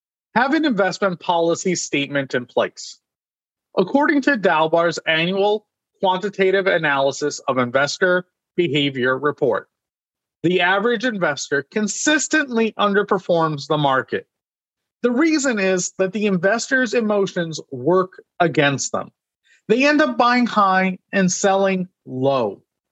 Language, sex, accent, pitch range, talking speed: English, male, American, 160-225 Hz, 110 wpm